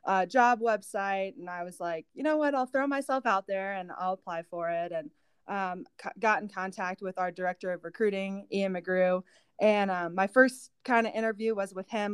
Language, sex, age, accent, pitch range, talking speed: English, female, 20-39, American, 180-215 Hz, 210 wpm